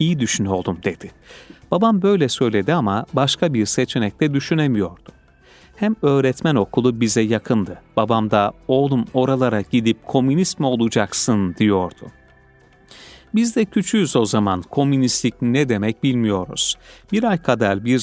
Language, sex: Turkish, male